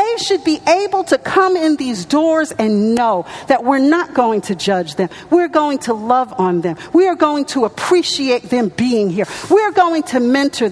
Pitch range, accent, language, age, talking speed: 270-370 Hz, American, English, 50-69, 195 wpm